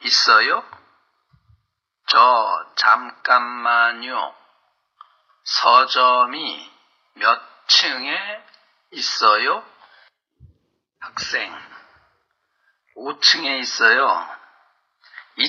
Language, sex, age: Chinese, male, 40-59